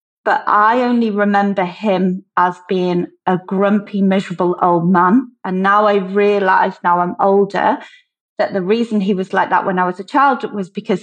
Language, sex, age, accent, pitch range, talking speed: English, female, 30-49, British, 185-225 Hz, 180 wpm